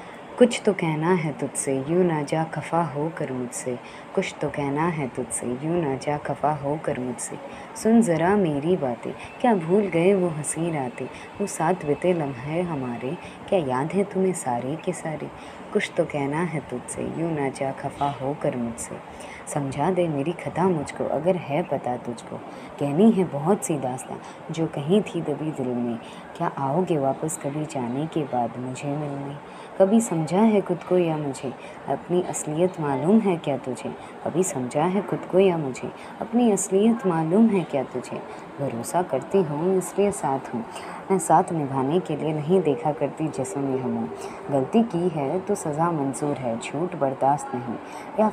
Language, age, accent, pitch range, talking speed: Hindi, 20-39, native, 140-180 Hz, 175 wpm